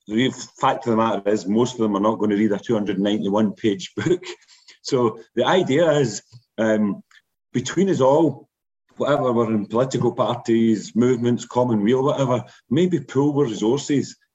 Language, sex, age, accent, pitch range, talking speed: English, male, 40-59, British, 110-140 Hz, 160 wpm